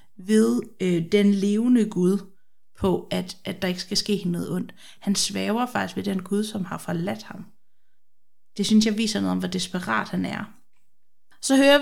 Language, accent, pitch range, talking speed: Danish, native, 185-220 Hz, 180 wpm